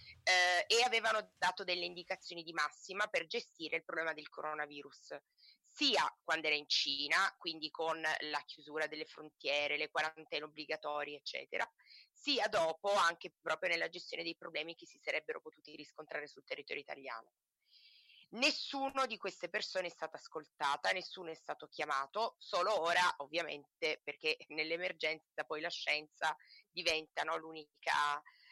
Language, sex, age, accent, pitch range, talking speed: Italian, female, 30-49, native, 155-185 Hz, 135 wpm